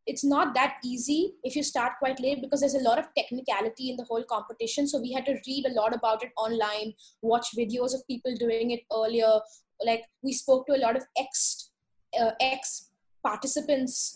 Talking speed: 205 wpm